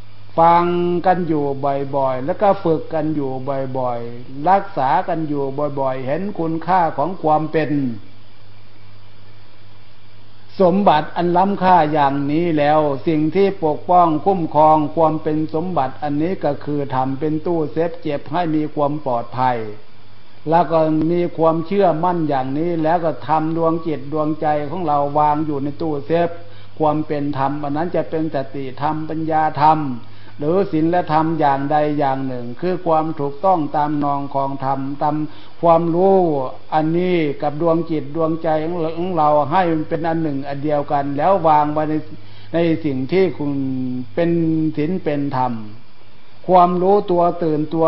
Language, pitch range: Thai, 135-165 Hz